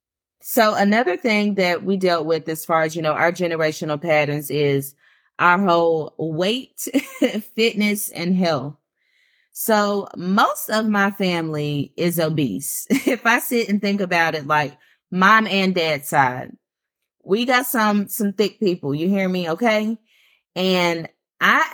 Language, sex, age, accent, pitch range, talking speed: English, female, 30-49, American, 155-205 Hz, 145 wpm